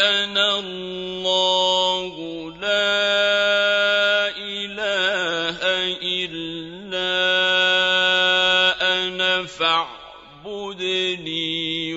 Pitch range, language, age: 140-215 Hz, Arabic, 40-59